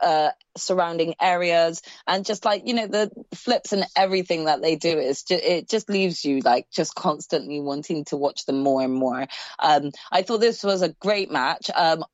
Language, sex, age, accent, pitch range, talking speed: English, female, 20-39, British, 165-200 Hz, 195 wpm